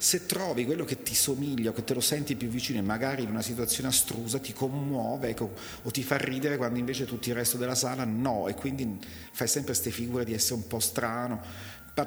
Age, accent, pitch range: 40-59, native, 110-140 Hz